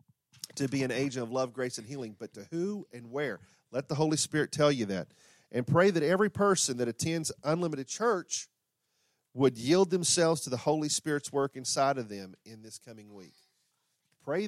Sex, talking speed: male, 190 wpm